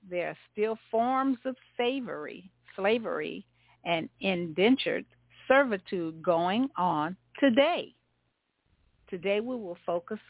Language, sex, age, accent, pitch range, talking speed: English, female, 50-69, American, 170-235 Hz, 95 wpm